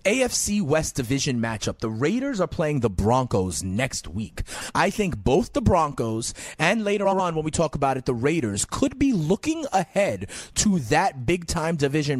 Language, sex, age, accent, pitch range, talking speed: English, male, 30-49, American, 115-155 Hz, 170 wpm